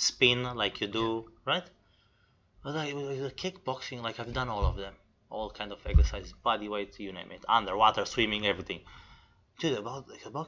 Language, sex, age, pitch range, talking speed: English, male, 20-39, 95-125 Hz, 170 wpm